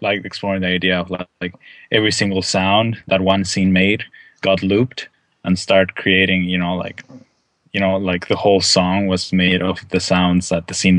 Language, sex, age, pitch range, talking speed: English, male, 10-29, 95-115 Hz, 195 wpm